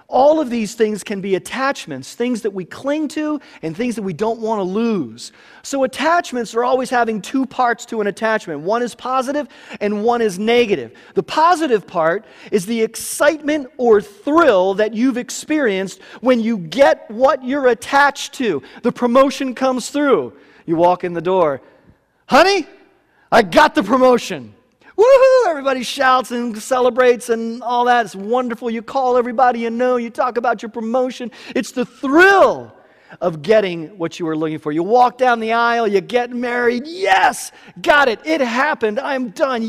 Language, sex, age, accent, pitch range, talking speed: English, male, 40-59, American, 185-270 Hz, 170 wpm